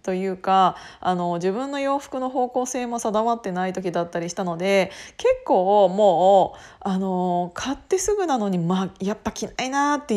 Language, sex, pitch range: Japanese, female, 185-280 Hz